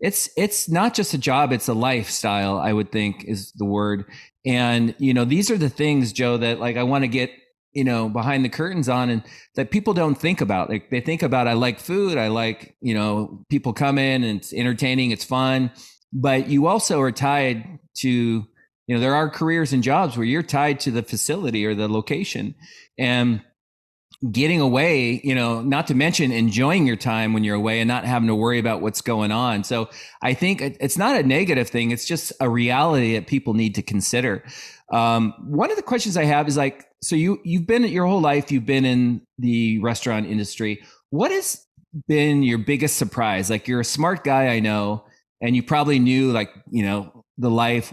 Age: 30-49